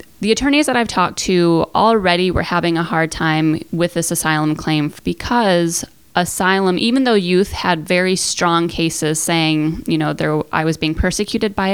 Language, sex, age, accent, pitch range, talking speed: English, female, 20-39, American, 165-200 Hz, 170 wpm